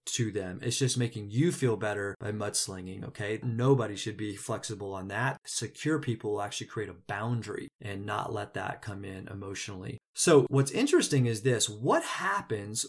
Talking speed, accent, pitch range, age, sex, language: 175 wpm, American, 110-135 Hz, 20-39, male, English